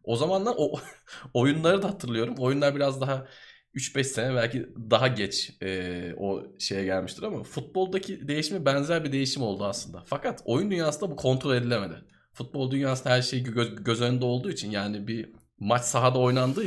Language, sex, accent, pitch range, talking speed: Turkish, male, native, 115-155 Hz, 165 wpm